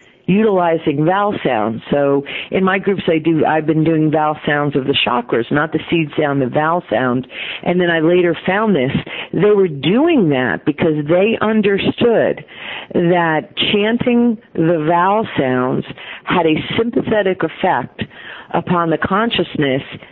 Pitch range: 150-200 Hz